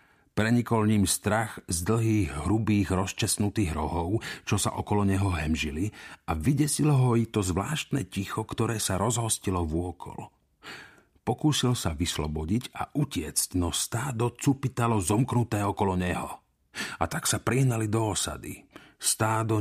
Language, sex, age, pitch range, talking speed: Slovak, male, 50-69, 90-115 Hz, 130 wpm